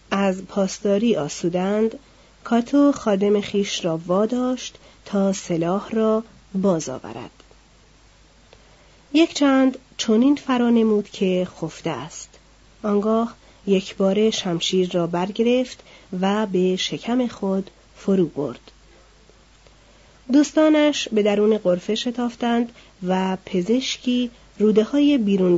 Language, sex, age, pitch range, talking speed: Persian, female, 40-59, 185-240 Hz, 100 wpm